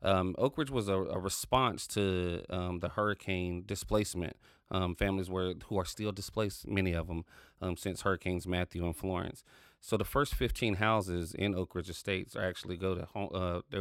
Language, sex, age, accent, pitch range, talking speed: English, male, 30-49, American, 90-100 Hz, 190 wpm